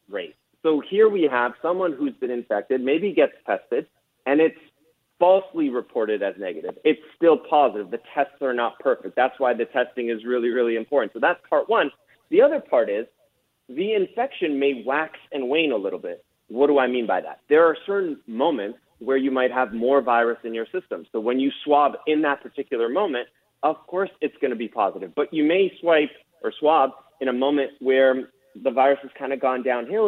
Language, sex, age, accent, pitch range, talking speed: English, male, 30-49, American, 120-170 Hz, 205 wpm